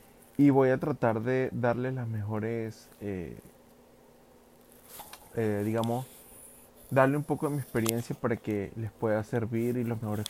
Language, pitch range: Spanish, 110-130 Hz